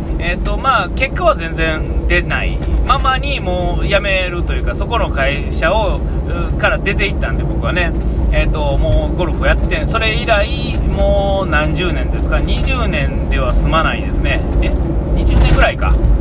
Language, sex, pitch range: Japanese, male, 70-80 Hz